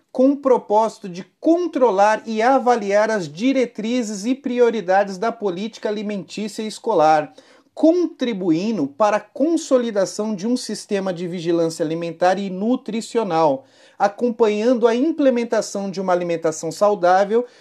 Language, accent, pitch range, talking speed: Portuguese, Brazilian, 195-240 Hz, 115 wpm